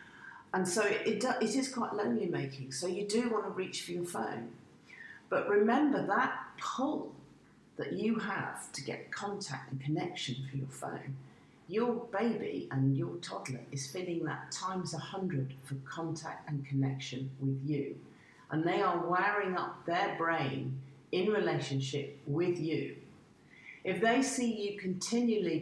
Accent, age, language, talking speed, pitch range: British, 40-59, English, 155 wpm, 135-180 Hz